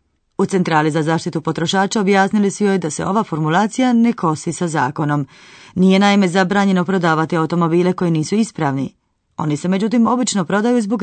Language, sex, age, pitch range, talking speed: Croatian, female, 30-49, 160-210 Hz, 165 wpm